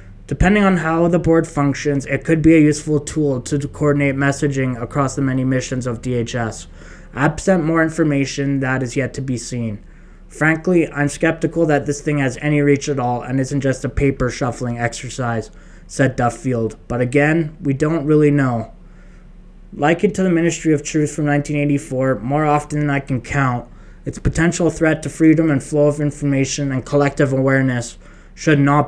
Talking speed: 175 wpm